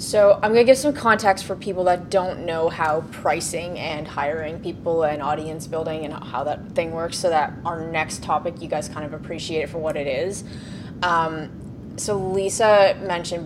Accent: American